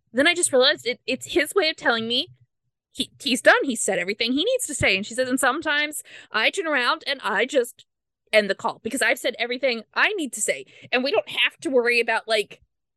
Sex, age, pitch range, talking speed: female, 20-39, 225-330 Hz, 235 wpm